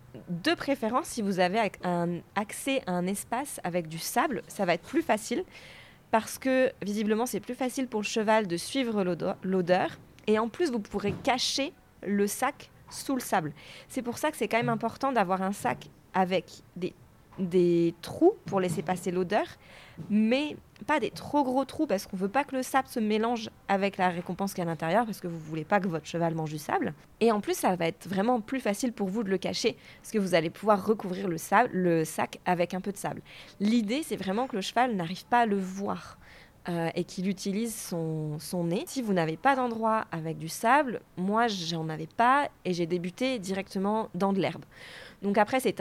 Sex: female